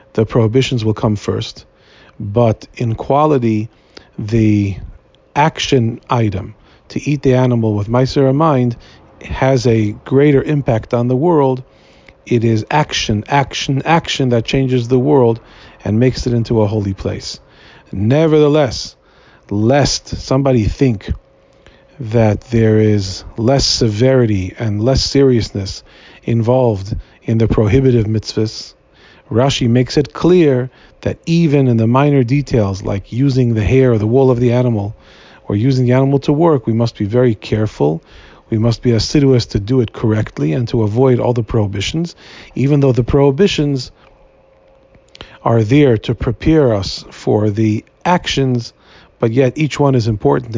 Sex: male